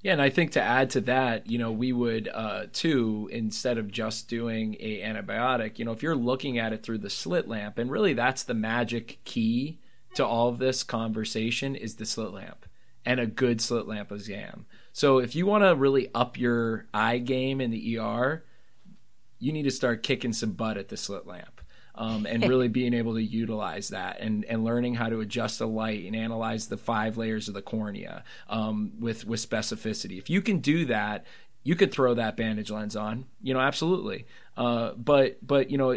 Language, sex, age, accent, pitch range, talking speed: English, male, 20-39, American, 110-130 Hz, 210 wpm